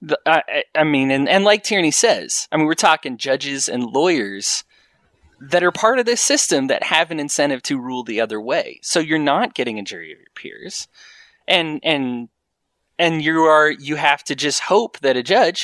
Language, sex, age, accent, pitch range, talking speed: English, male, 20-39, American, 125-185 Hz, 200 wpm